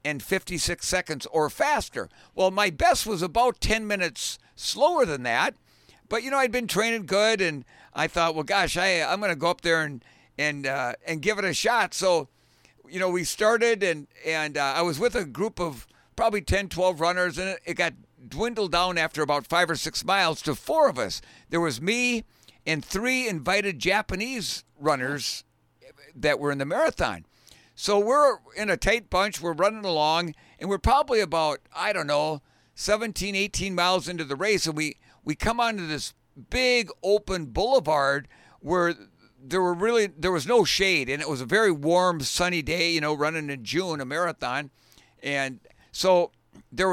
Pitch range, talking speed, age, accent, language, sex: 150-205 Hz, 185 wpm, 60-79, American, English, male